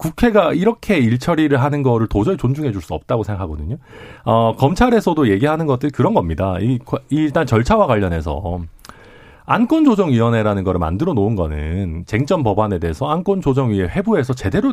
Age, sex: 40-59, male